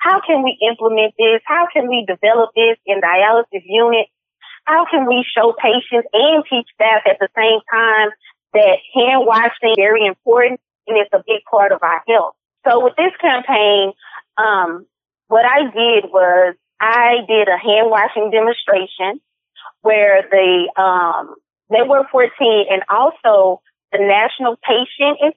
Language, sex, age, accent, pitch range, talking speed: English, female, 20-39, American, 195-245 Hz, 155 wpm